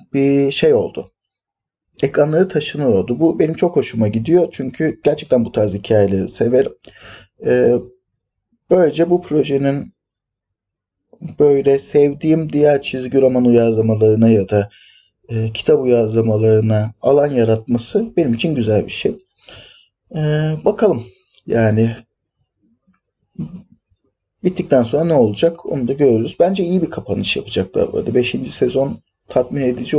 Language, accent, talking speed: Turkish, native, 115 wpm